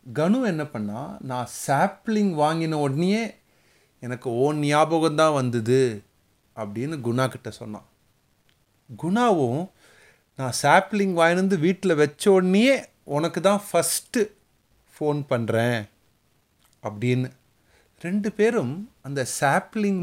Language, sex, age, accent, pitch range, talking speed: Tamil, male, 30-49, native, 115-175 Hz, 90 wpm